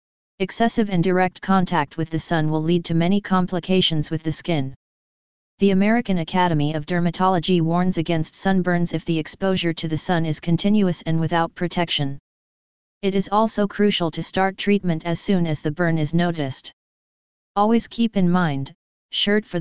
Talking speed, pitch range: 165 wpm, 165-190 Hz